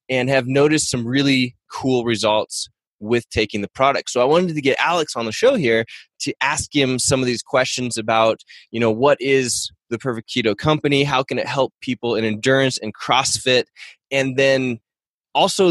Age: 20-39